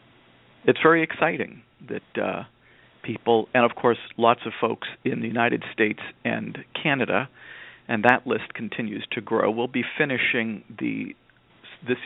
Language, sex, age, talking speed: English, male, 50-69, 150 wpm